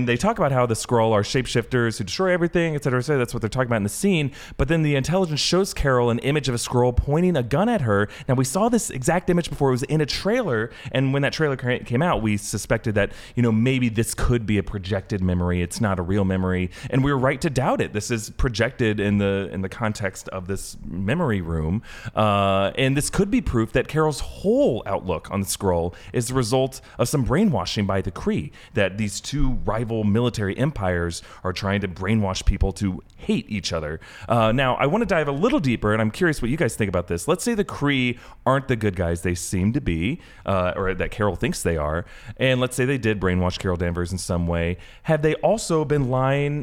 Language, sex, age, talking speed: English, male, 30-49, 235 wpm